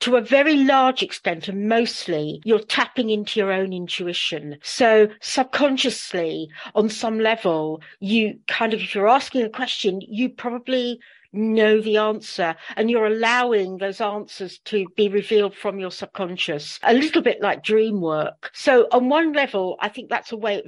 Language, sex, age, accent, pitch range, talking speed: English, female, 60-79, British, 190-240 Hz, 170 wpm